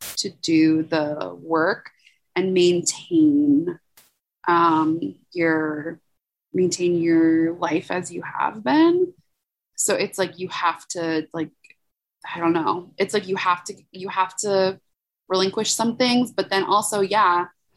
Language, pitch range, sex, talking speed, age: English, 165-215 Hz, female, 135 wpm, 20-39